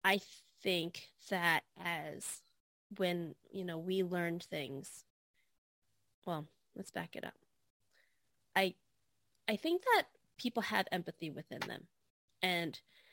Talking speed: 115 wpm